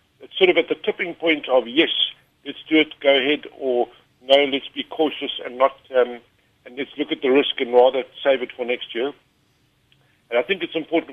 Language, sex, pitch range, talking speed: English, male, 115-150 Hz, 215 wpm